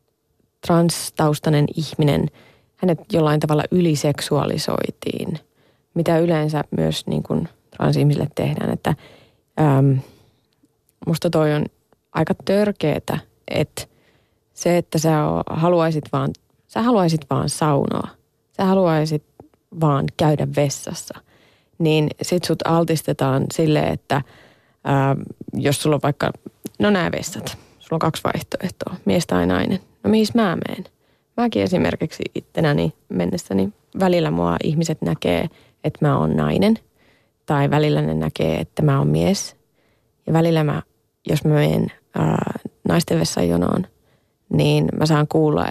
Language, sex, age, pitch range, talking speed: Finnish, female, 30-49, 115-165 Hz, 125 wpm